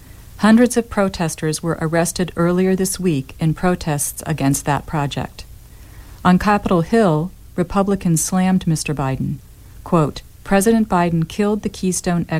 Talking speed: 125 wpm